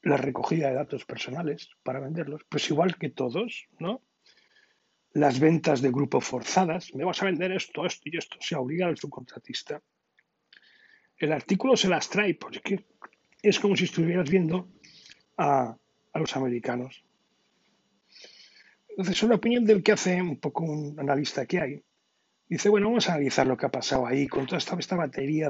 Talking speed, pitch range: 170 wpm, 140-205 Hz